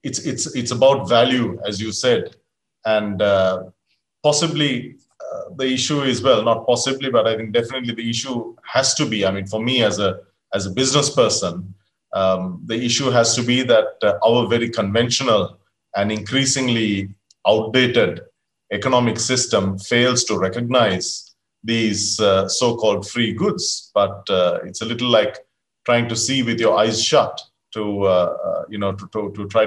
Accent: Indian